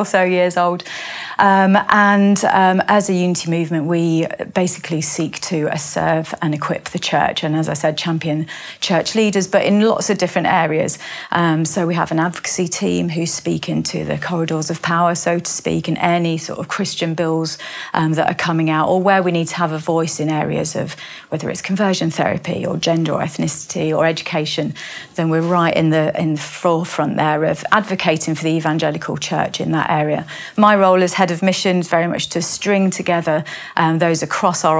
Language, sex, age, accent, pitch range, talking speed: English, female, 30-49, British, 160-185 Hz, 200 wpm